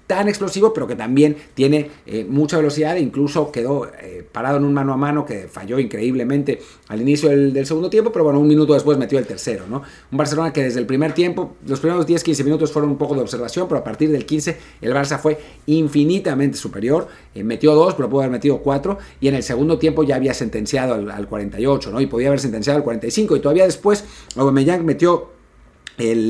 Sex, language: male, Spanish